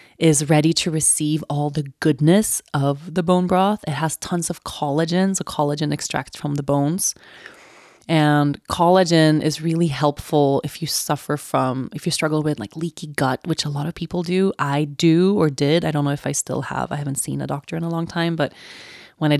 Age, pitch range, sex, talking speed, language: 20-39, 140-165 Hz, female, 205 wpm, English